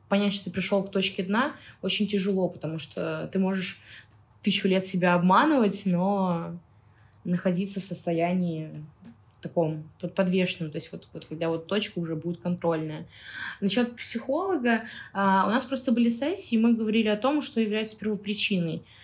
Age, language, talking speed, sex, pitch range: 20-39, Russian, 150 wpm, female, 175-215 Hz